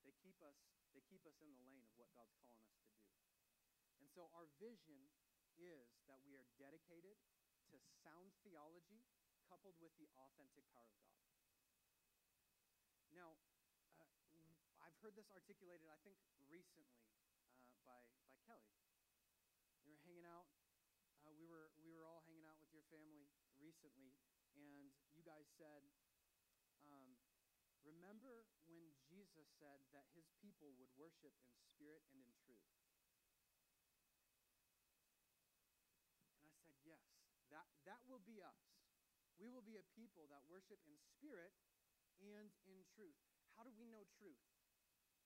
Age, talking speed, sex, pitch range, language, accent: 30-49, 145 wpm, male, 145-195 Hz, English, American